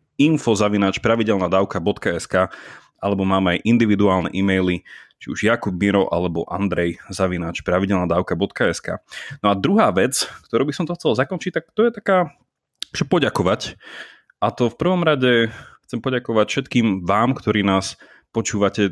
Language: Slovak